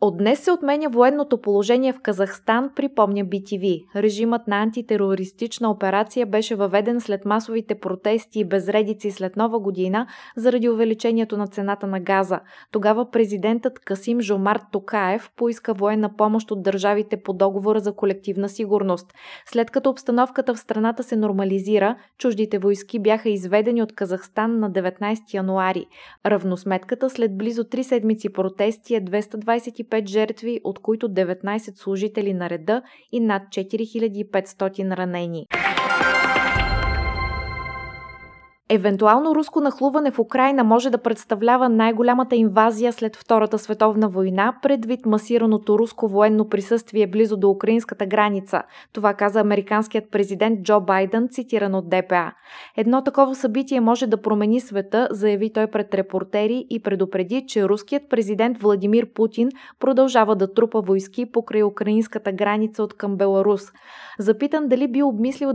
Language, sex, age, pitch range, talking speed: Bulgarian, female, 20-39, 200-235 Hz, 130 wpm